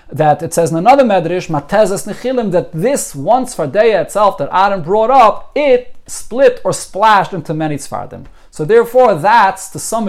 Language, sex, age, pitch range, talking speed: English, male, 30-49, 150-205 Hz, 165 wpm